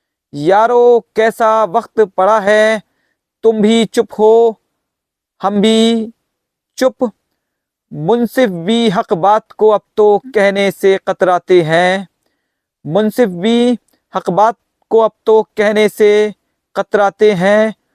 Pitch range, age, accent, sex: 205-230 Hz, 40-59, native, male